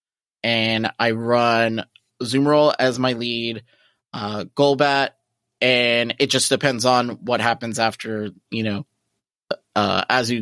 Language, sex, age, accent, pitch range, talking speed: English, male, 20-39, American, 110-130 Hz, 120 wpm